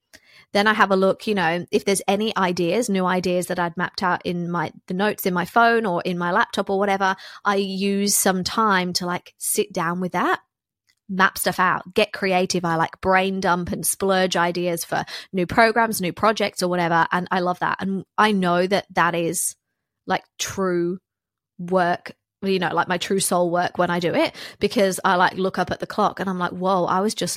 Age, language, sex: 20-39, English, female